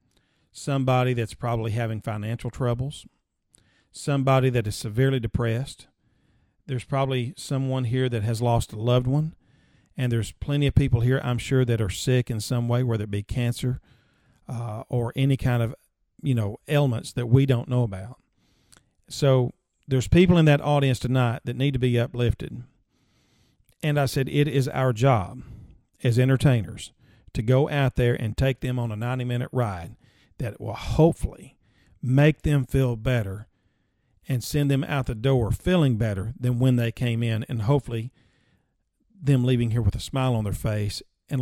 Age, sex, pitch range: 50-69, male, 115-135 Hz